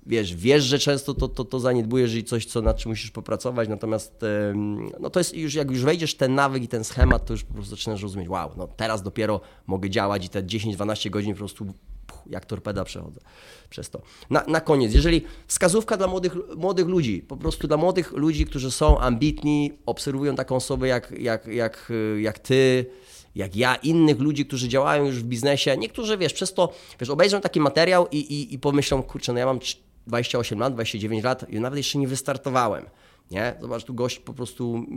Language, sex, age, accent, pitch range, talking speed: Polish, male, 20-39, native, 115-145 Hz, 200 wpm